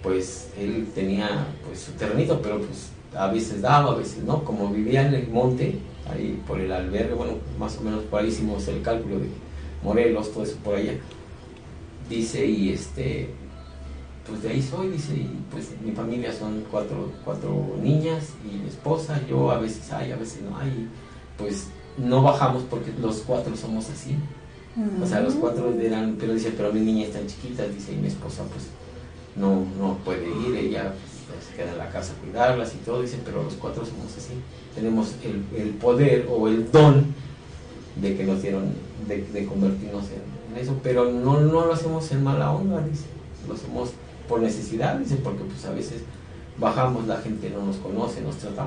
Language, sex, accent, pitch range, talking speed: Spanish, male, Mexican, 100-135 Hz, 190 wpm